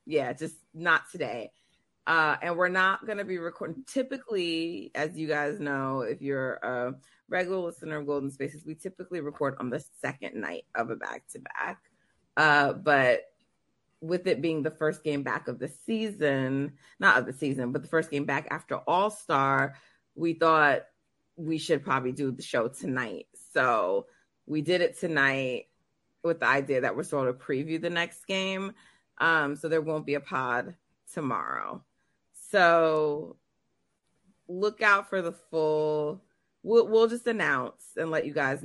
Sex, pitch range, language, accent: female, 140-190 Hz, English, American